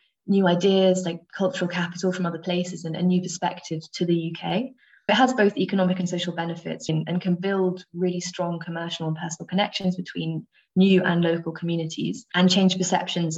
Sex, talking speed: female, 180 wpm